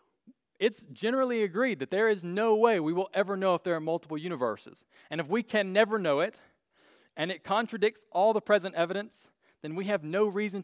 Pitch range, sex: 155-220 Hz, male